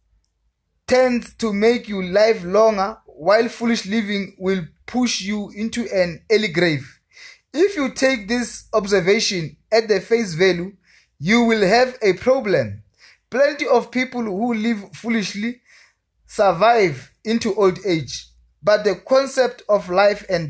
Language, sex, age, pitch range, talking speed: English, male, 20-39, 180-230 Hz, 135 wpm